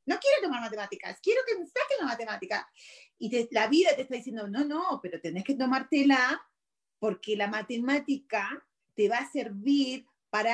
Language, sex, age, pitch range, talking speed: Spanish, female, 30-49, 210-280 Hz, 175 wpm